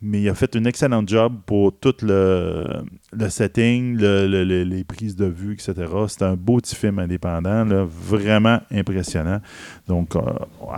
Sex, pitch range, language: male, 100-125 Hz, French